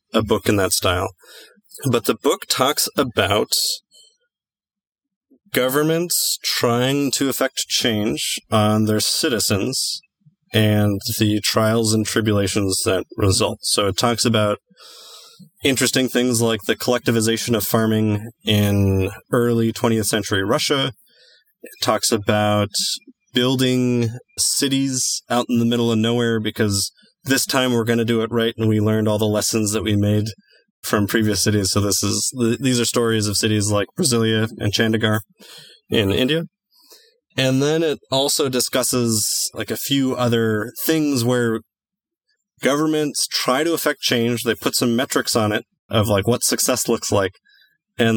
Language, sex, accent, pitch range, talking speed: English, male, American, 110-135 Hz, 145 wpm